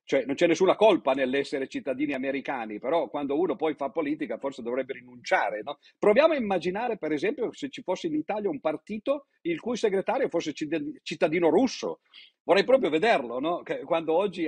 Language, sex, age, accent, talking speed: Italian, male, 50-69, native, 175 wpm